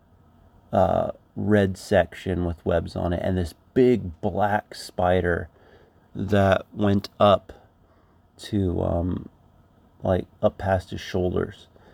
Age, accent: 30-49, American